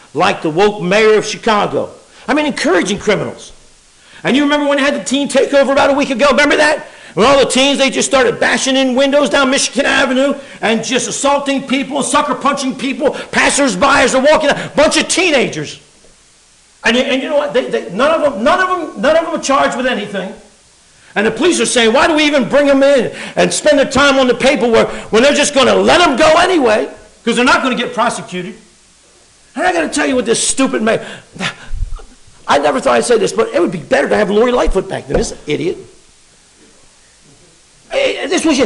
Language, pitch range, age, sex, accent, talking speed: English, 220-285 Hz, 50-69, male, American, 200 wpm